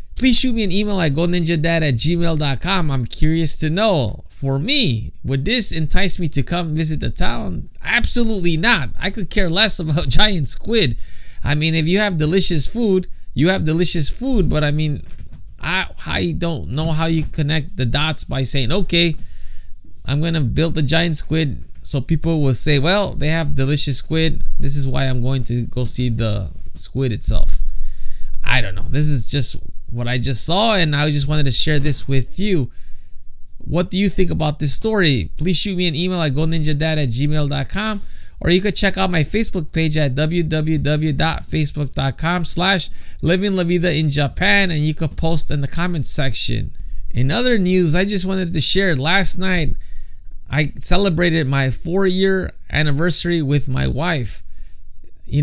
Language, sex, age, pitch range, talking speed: English, male, 20-39, 135-175 Hz, 175 wpm